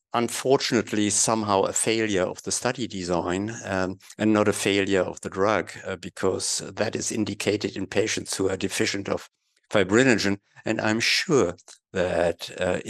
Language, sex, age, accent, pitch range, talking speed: English, male, 60-79, German, 95-110 Hz, 155 wpm